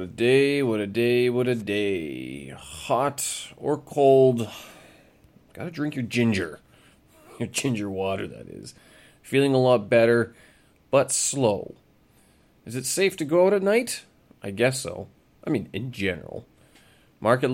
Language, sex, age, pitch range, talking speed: English, male, 30-49, 95-130 Hz, 145 wpm